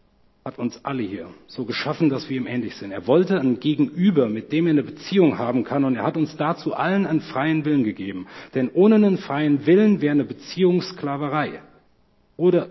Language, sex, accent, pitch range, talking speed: German, male, German, 125-160 Hz, 195 wpm